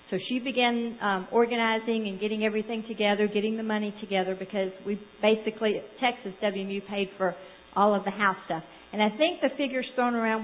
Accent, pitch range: American, 200-245 Hz